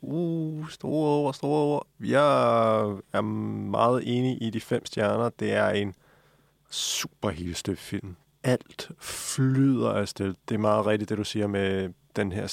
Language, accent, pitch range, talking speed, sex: Danish, native, 100-115 Hz, 155 wpm, male